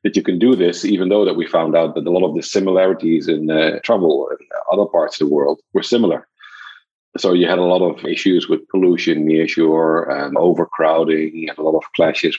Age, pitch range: 40-59, 80-115 Hz